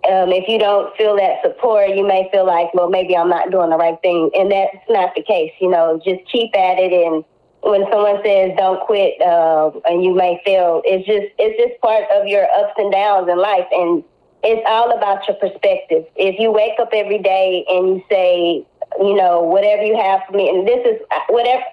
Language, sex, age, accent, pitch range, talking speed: English, female, 20-39, American, 180-215 Hz, 220 wpm